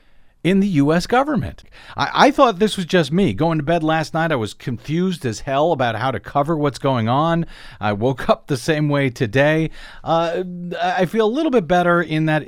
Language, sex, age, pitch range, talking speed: English, male, 40-59, 135-190 Hz, 210 wpm